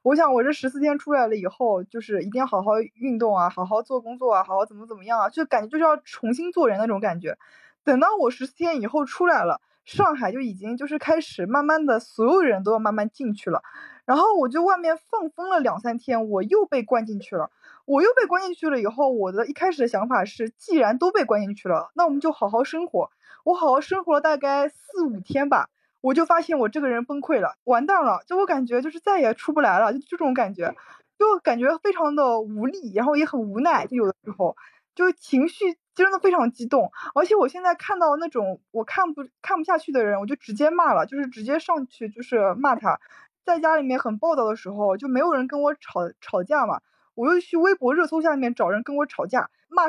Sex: female